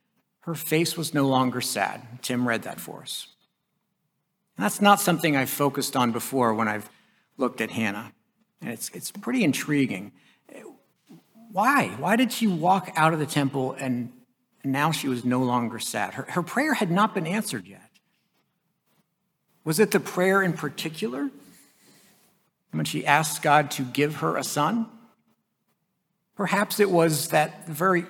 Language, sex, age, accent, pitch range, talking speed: English, male, 60-79, American, 130-200 Hz, 155 wpm